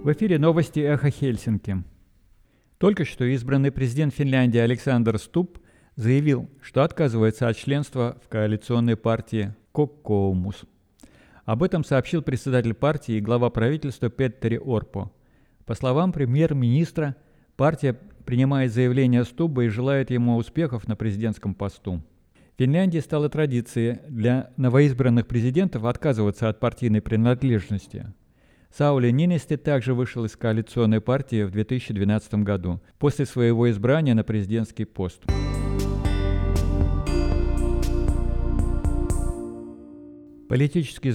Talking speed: 110 wpm